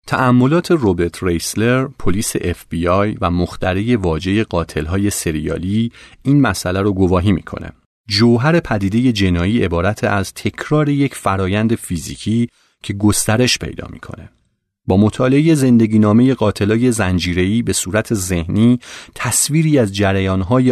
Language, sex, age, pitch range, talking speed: Persian, male, 30-49, 90-115 Hz, 120 wpm